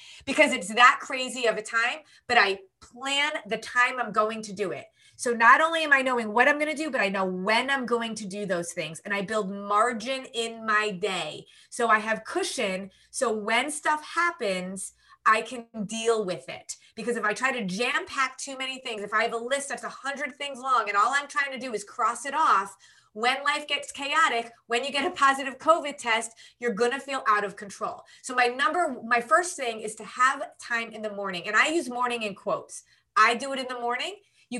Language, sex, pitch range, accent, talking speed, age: English, female, 215-275 Hz, American, 225 wpm, 20-39